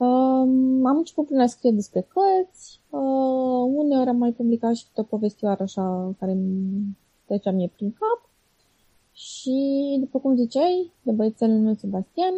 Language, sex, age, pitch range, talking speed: Romanian, female, 20-39, 205-250 Hz, 145 wpm